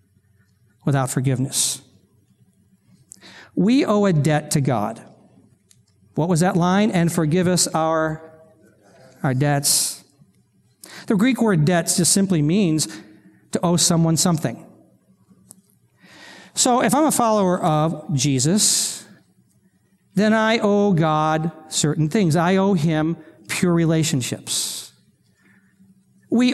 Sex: male